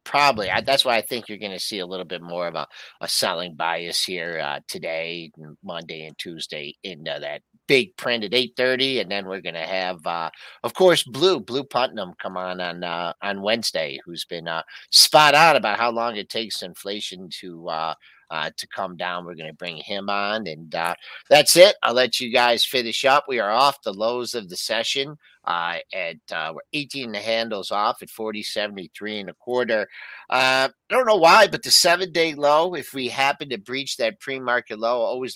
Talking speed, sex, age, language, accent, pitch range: 205 wpm, male, 50-69, English, American, 100-135 Hz